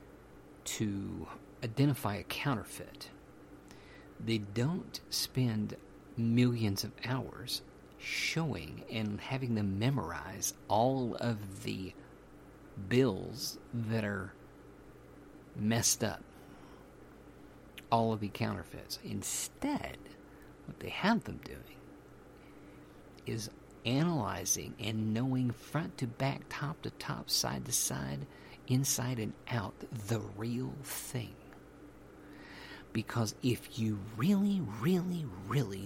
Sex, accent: male, American